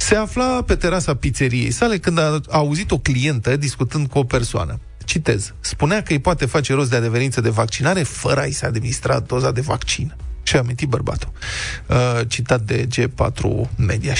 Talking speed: 170 wpm